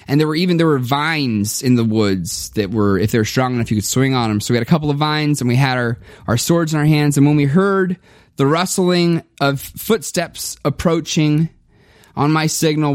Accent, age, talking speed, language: American, 20-39, 230 wpm, English